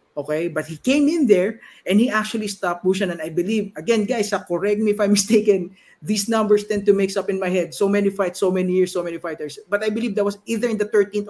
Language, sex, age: Filipino, male, 50-69